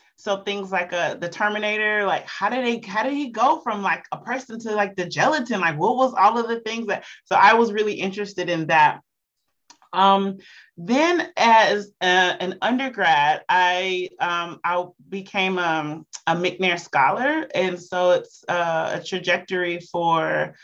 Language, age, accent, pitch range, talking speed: English, 30-49, American, 175-210 Hz, 170 wpm